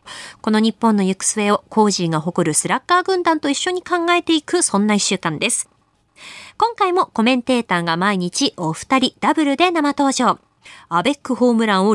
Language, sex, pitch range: Japanese, female, 200-300 Hz